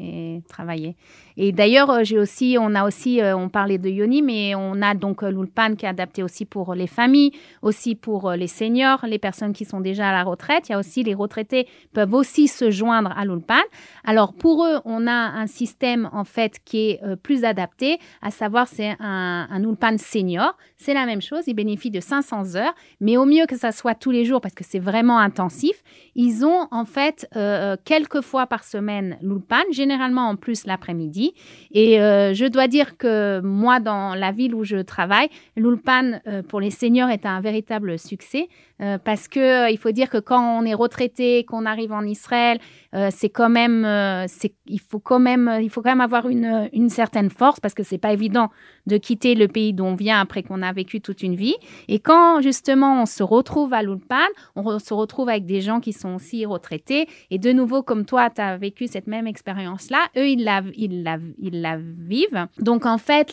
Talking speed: 205 wpm